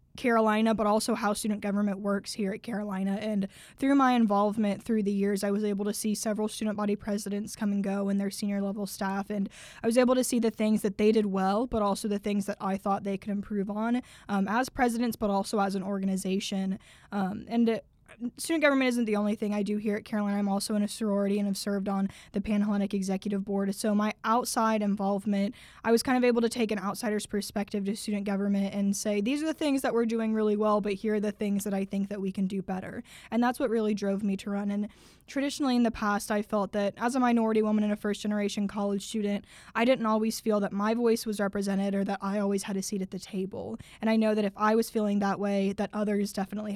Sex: female